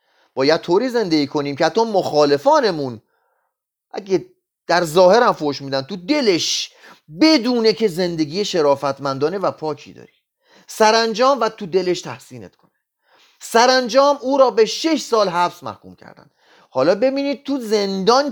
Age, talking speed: 30-49, 135 wpm